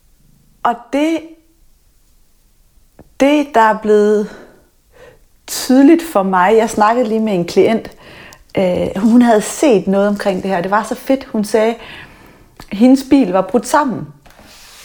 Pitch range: 210-275 Hz